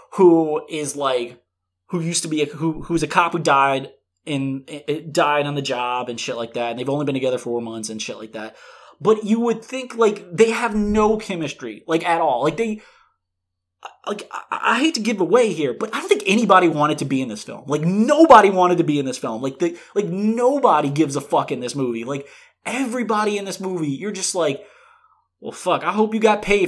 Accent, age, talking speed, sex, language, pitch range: American, 20-39, 225 wpm, male, English, 135-215 Hz